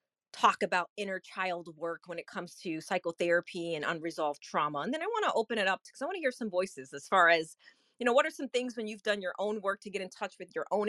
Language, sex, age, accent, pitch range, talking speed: English, female, 30-49, American, 170-210 Hz, 275 wpm